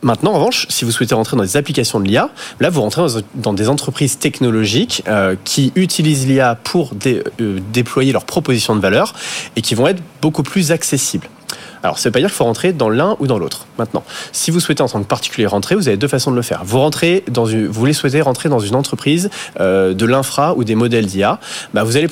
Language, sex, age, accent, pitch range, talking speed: French, male, 30-49, French, 110-150 Hz, 220 wpm